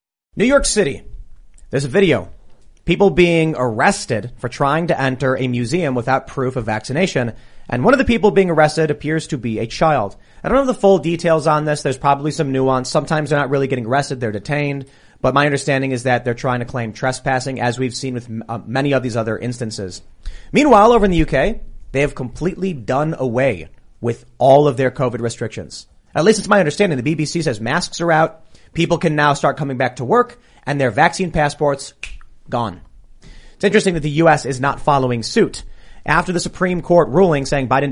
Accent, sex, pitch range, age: American, male, 125-160 Hz, 30-49